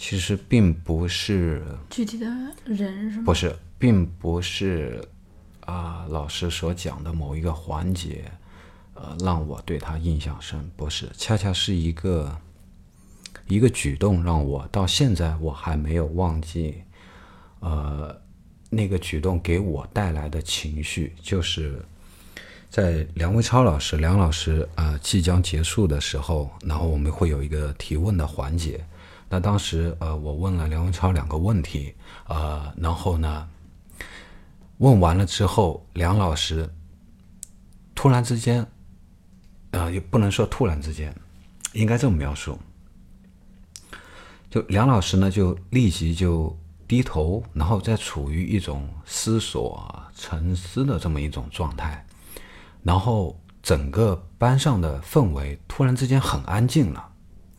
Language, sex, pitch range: Chinese, male, 80-95 Hz